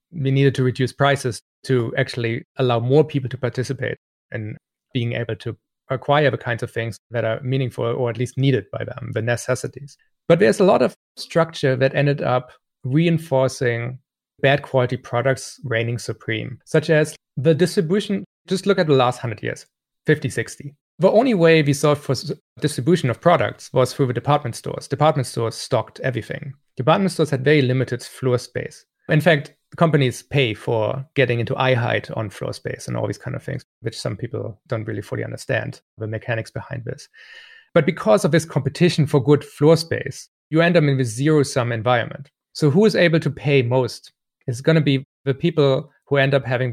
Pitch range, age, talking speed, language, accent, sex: 120-150 Hz, 30-49, 190 wpm, English, German, male